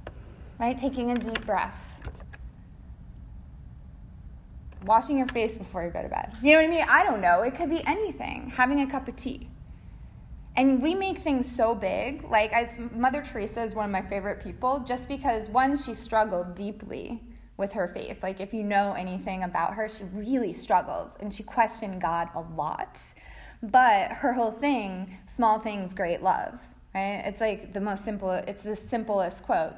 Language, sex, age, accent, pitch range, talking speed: English, female, 20-39, American, 195-260 Hz, 175 wpm